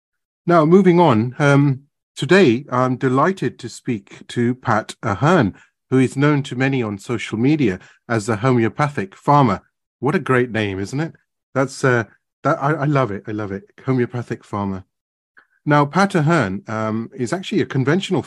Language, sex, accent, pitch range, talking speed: English, male, British, 110-145 Hz, 165 wpm